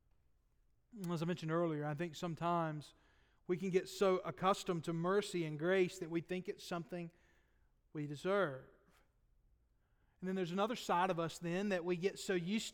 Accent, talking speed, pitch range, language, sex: American, 170 wpm, 185-255 Hz, English, male